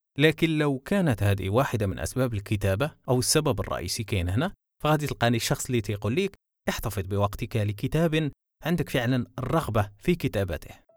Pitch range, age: 105-145 Hz, 20-39